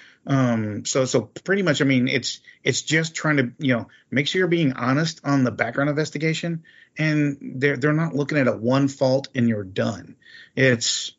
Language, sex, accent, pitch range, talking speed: English, male, American, 120-140 Hz, 195 wpm